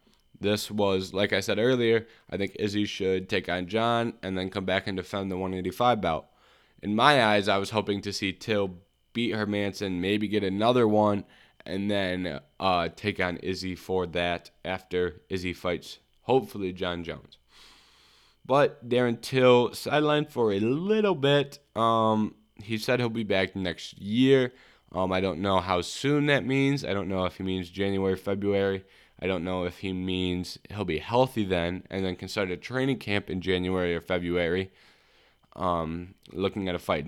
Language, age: English, 10-29